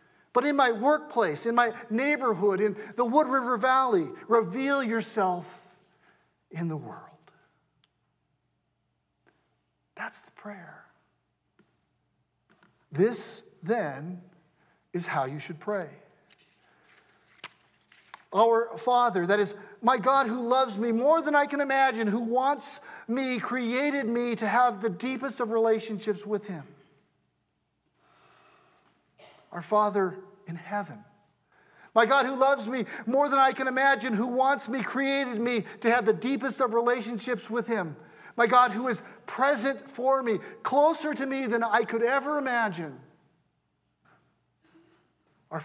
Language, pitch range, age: English, 195-260 Hz, 50-69